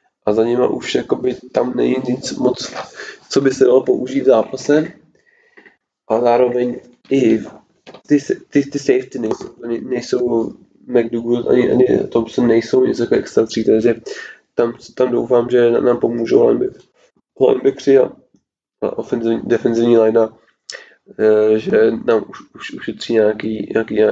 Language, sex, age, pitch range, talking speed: Czech, male, 20-39, 110-125 Hz, 125 wpm